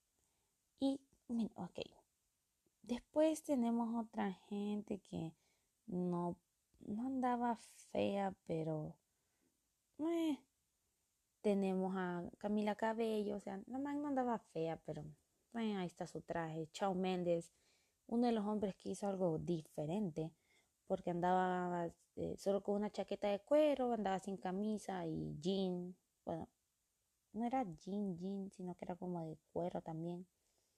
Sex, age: female, 20-39